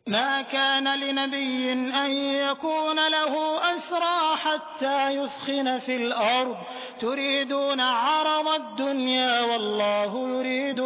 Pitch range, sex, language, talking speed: 235-280 Hz, male, Hindi, 90 wpm